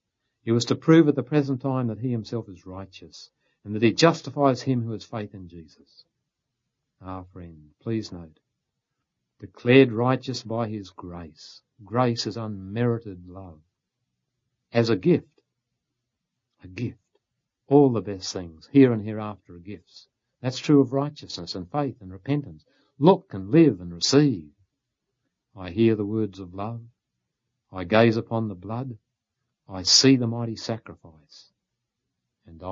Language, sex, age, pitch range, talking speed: English, male, 60-79, 95-130 Hz, 145 wpm